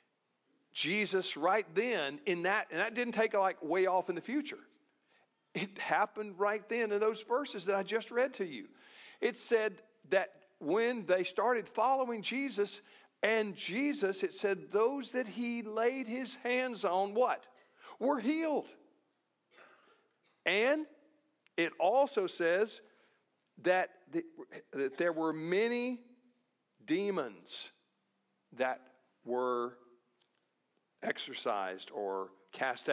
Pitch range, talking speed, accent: 155-245 Hz, 120 wpm, American